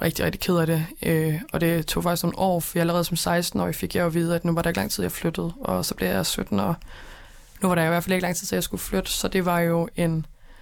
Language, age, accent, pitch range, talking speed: Danish, 20-39, native, 175-190 Hz, 300 wpm